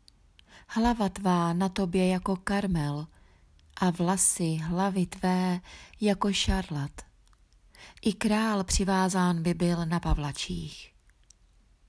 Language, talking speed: Czech, 95 wpm